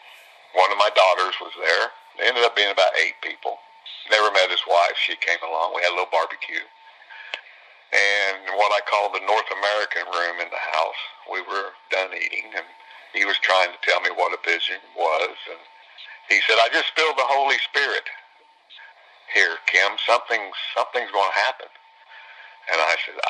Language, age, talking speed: English, 60-79, 180 wpm